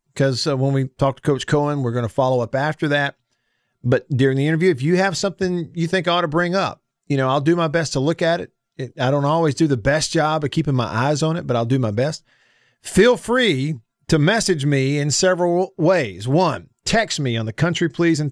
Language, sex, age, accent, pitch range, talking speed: English, male, 50-69, American, 125-170 Hz, 235 wpm